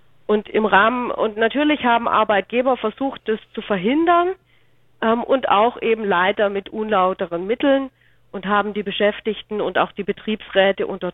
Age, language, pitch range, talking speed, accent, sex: 40-59, German, 190-225 Hz, 150 wpm, German, female